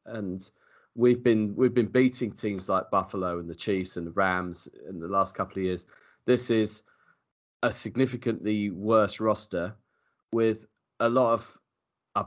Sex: male